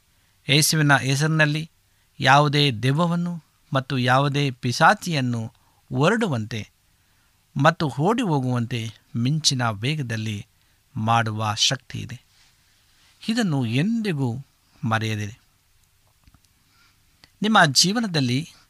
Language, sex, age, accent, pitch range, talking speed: Kannada, male, 50-69, native, 110-155 Hz, 65 wpm